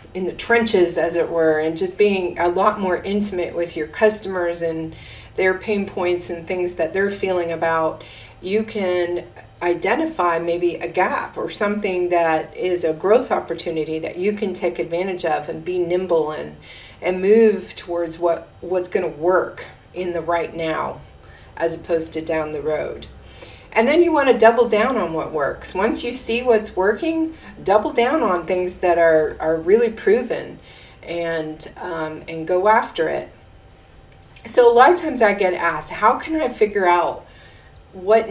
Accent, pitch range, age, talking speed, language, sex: American, 160-200 Hz, 40-59, 175 wpm, English, female